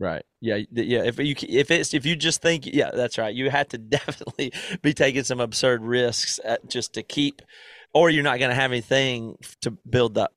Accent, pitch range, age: American, 110-130 Hz, 30-49